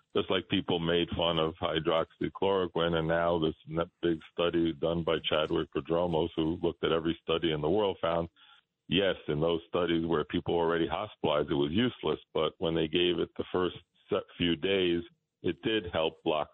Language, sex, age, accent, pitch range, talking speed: English, male, 50-69, American, 80-85 Hz, 180 wpm